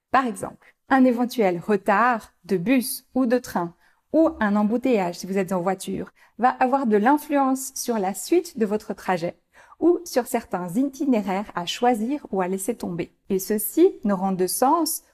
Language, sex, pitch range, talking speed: French, female, 195-265 Hz, 175 wpm